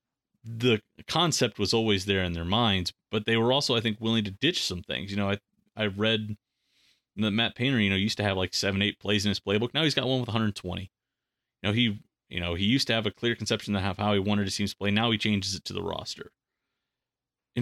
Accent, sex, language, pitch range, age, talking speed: American, male, English, 95-115 Hz, 30-49, 250 wpm